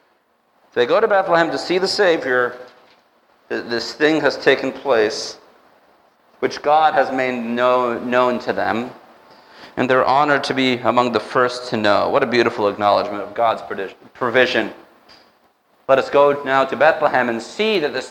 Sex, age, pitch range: male, 40-59, 125-150 Hz